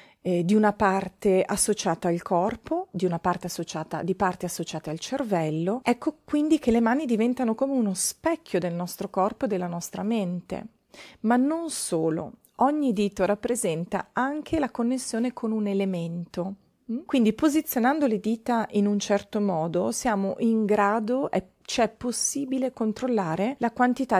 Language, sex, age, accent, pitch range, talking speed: Italian, female, 40-59, native, 180-225 Hz, 150 wpm